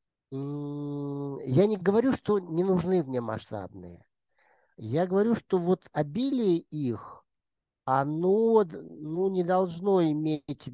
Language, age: Russian, 50-69